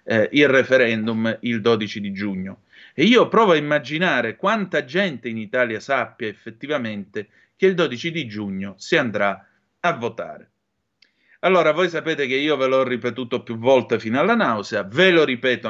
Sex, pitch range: male, 115-170 Hz